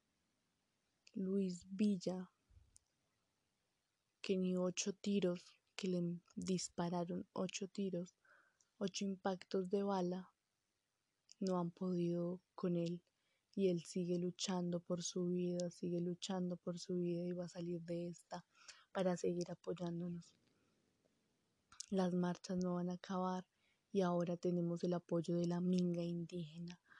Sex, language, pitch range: female, Spanish, 175-185 Hz